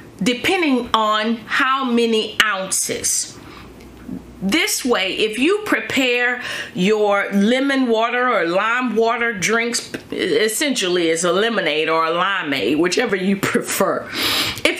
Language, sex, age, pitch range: English, female, 30-49, 200-280 Hz